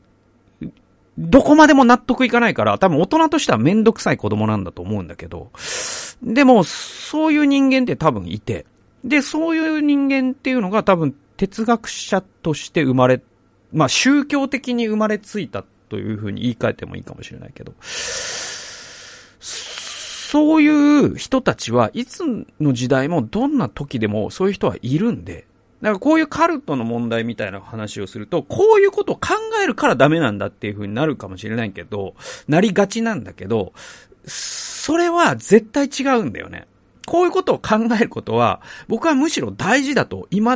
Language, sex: Japanese, male